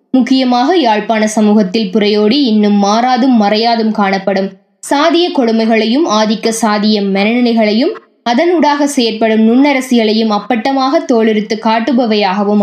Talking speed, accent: 95 wpm, native